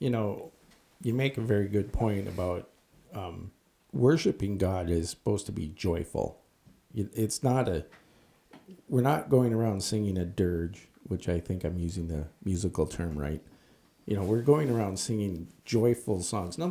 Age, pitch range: 50-69, 90-115 Hz